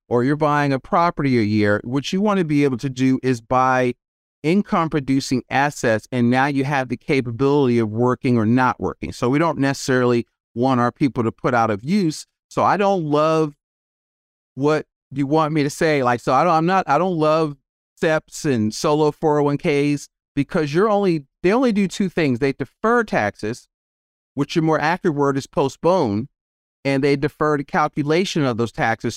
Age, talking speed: 40-59, 185 wpm